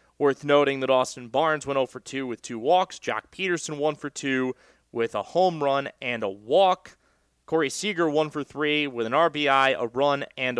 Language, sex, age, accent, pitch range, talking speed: English, male, 30-49, American, 135-180 Hz, 170 wpm